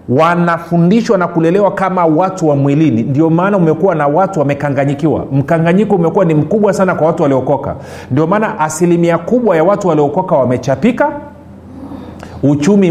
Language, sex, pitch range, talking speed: Swahili, male, 145-185 Hz, 140 wpm